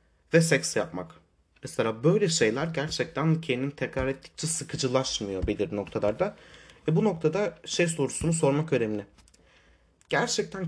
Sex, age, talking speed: male, 30-49, 120 wpm